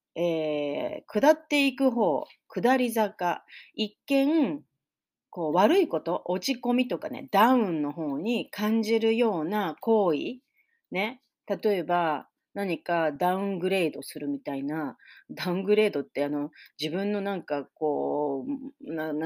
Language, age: Japanese, 30-49